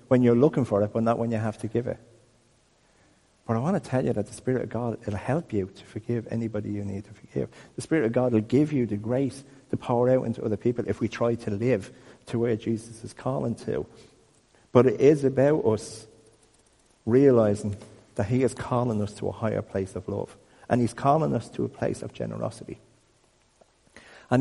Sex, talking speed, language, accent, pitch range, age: male, 215 wpm, English, British, 105-130 Hz, 50-69